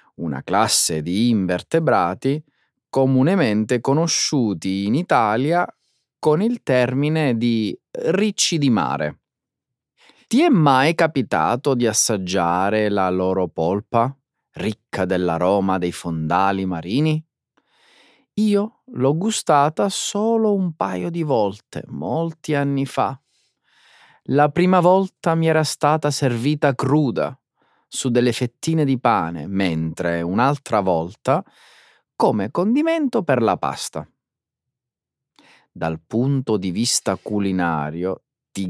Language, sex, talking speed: Italian, male, 105 wpm